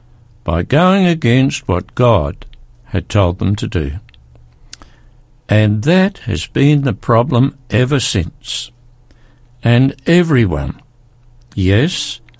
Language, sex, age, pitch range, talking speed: English, male, 60-79, 100-125 Hz, 100 wpm